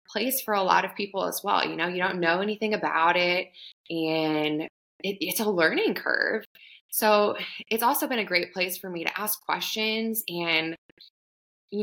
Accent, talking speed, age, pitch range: American, 180 wpm, 20-39, 170-215 Hz